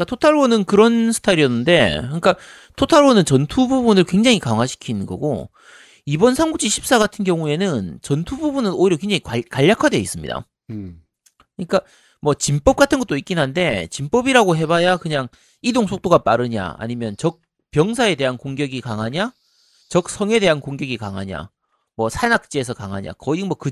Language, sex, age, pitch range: Korean, male, 40-59, 135-230 Hz